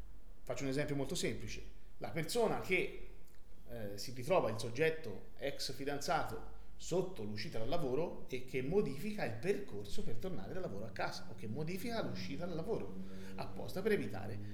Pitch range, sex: 115-160 Hz, male